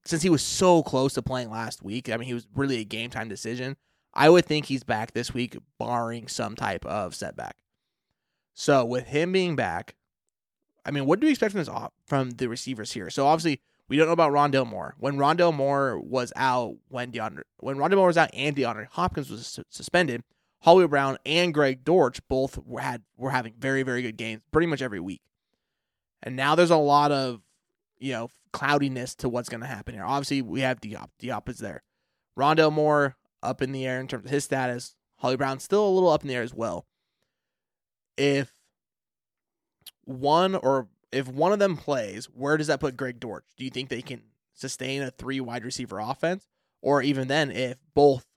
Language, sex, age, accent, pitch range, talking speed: English, male, 20-39, American, 125-145 Hz, 200 wpm